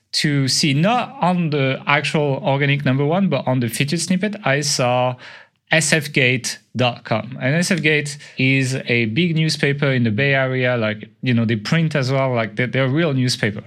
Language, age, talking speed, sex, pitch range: English, 30-49, 175 wpm, male, 125-160 Hz